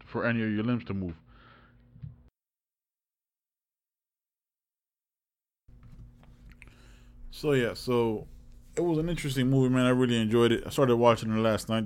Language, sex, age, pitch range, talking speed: English, male, 20-39, 115-135 Hz, 130 wpm